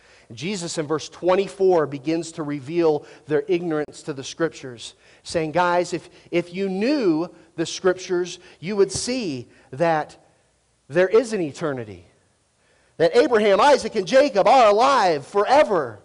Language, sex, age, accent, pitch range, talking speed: English, male, 40-59, American, 170-270 Hz, 135 wpm